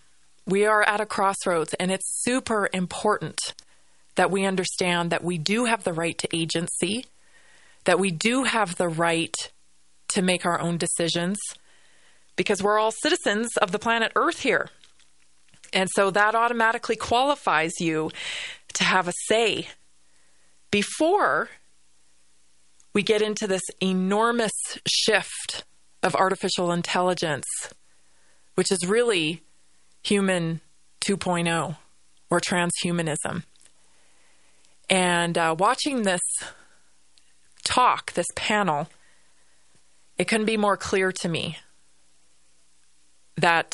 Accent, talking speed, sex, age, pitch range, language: American, 110 wpm, female, 30-49, 150-210 Hz, English